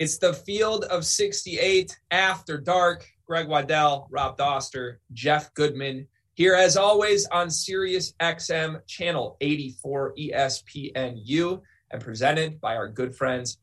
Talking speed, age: 125 wpm, 30-49